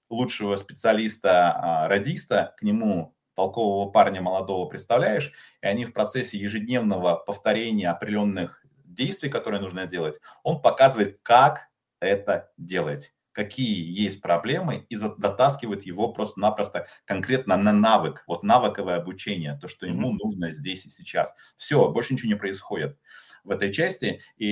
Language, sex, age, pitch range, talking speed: Russian, male, 30-49, 100-120 Hz, 130 wpm